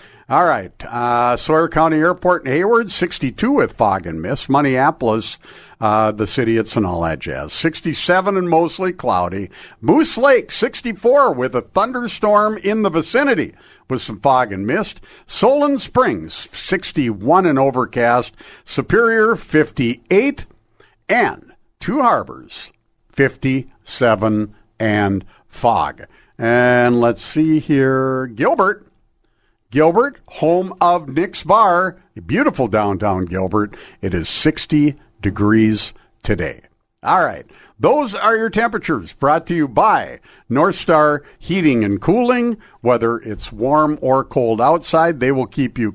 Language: English